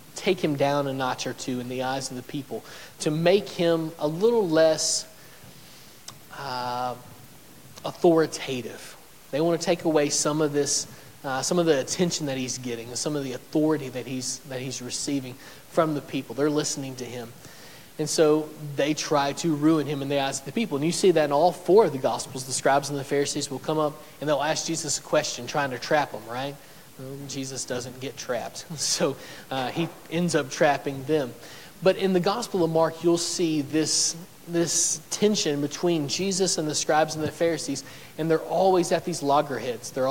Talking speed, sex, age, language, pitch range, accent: 200 wpm, male, 40-59, English, 135-160 Hz, American